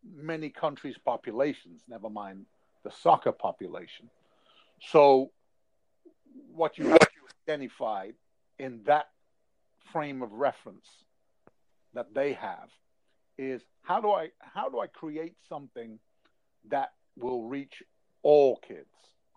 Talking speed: 110 wpm